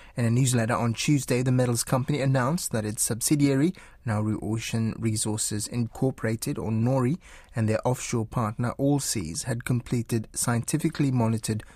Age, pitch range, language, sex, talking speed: 20-39, 110-130 Hz, English, male, 140 wpm